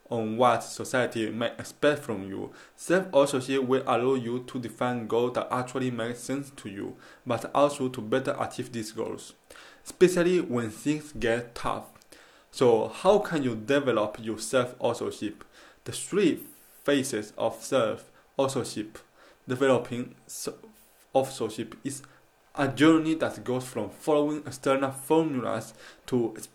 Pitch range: 115-140 Hz